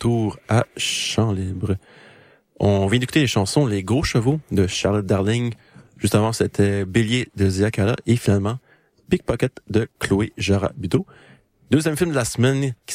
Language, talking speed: French, 160 wpm